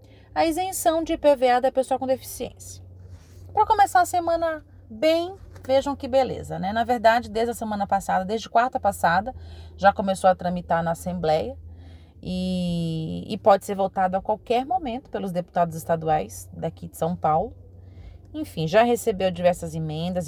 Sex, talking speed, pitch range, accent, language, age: female, 155 wpm, 165-245 Hz, Brazilian, Portuguese, 30-49